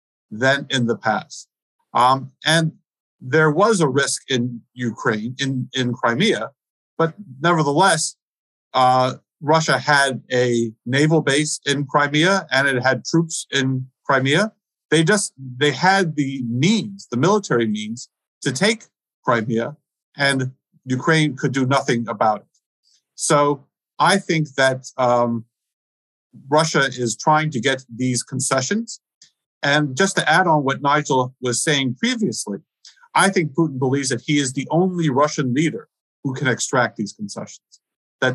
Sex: male